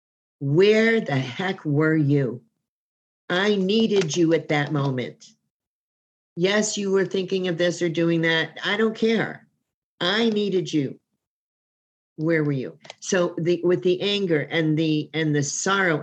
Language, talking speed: English, 145 wpm